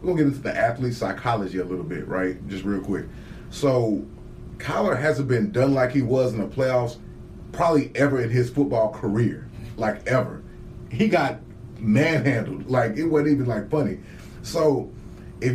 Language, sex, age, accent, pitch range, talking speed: English, male, 30-49, American, 105-130 Hz, 180 wpm